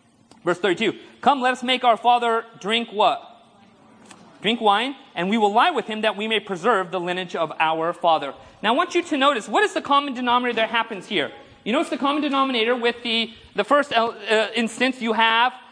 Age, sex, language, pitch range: 40-59, male, English, 225-270 Hz